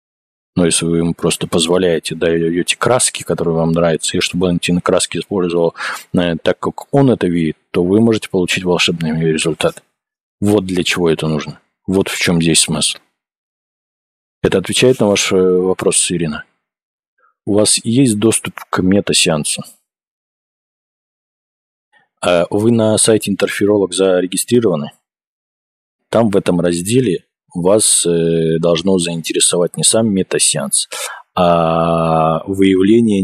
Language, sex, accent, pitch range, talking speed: Russian, male, native, 85-100 Hz, 120 wpm